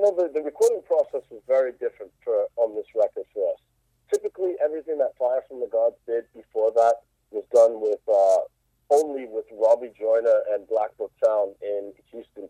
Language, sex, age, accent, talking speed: English, male, 30-49, American, 185 wpm